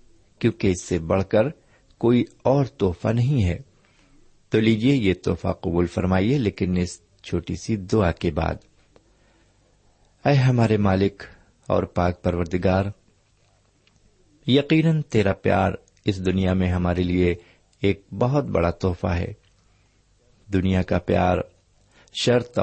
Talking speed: 120 wpm